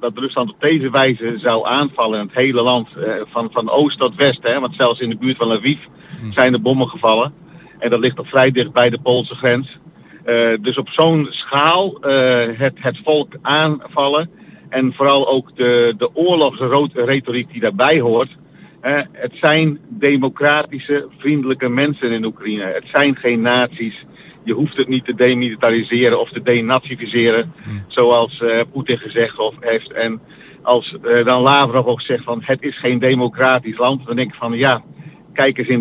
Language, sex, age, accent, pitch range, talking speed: Dutch, male, 50-69, Dutch, 120-150 Hz, 175 wpm